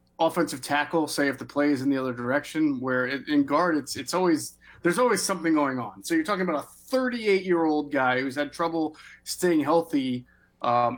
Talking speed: 200 wpm